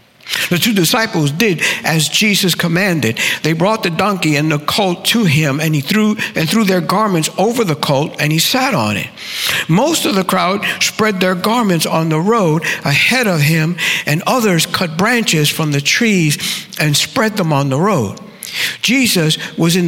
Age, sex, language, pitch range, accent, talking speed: 60-79, male, English, 150-215 Hz, American, 180 wpm